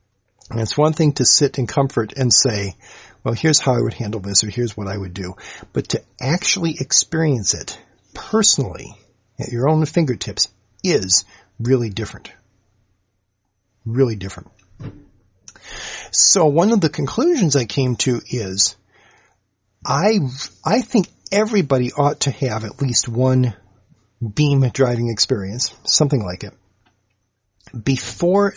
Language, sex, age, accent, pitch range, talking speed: English, male, 40-59, American, 105-135 Hz, 135 wpm